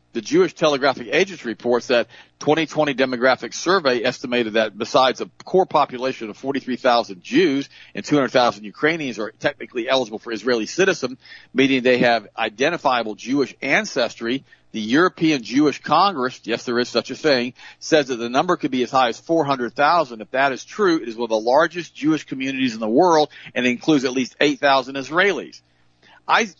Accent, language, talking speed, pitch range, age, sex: American, English, 170 wpm, 110-140 Hz, 50-69, male